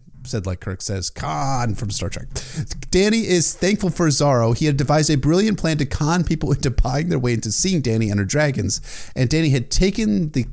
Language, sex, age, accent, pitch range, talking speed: English, male, 30-49, American, 115-175 Hz, 210 wpm